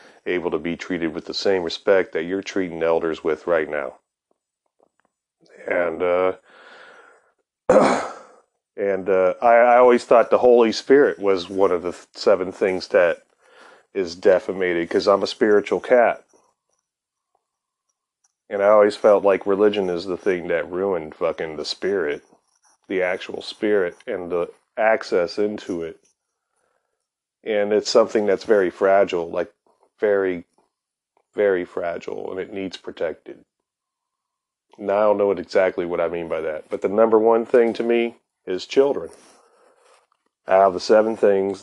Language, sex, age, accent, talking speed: English, male, 30-49, American, 145 wpm